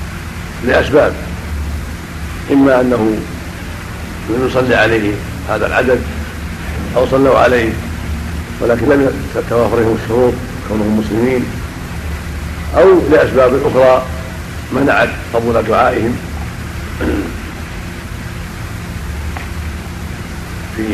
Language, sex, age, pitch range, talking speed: Arabic, male, 60-79, 85-115 Hz, 70 wpm